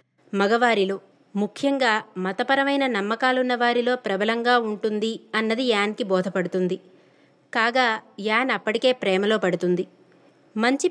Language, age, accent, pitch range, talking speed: Telugu, 30-49, native, 195-255 Hz, 90 wpm